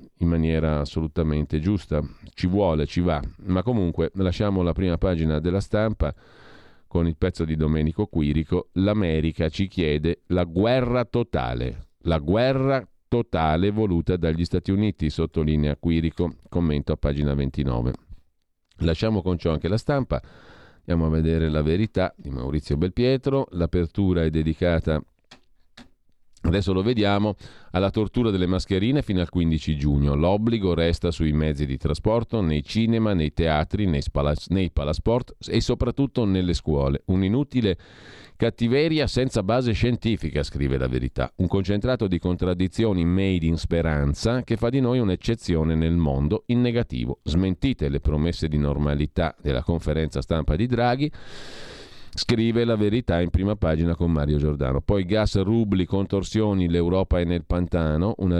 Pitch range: 80-105 Hz